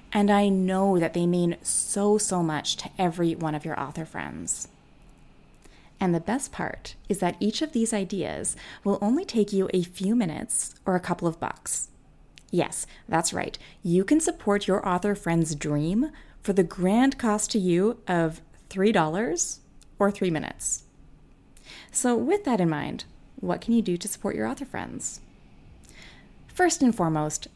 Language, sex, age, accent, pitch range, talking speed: English, female, 30-49, American, 170-225 Hz, 165 wpm